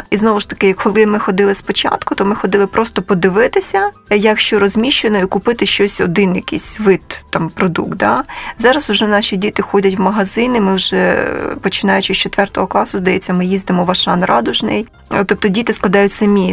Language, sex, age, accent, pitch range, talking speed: Ukrainian, female, 20-39, native, 190-210 Hz, 170 wpm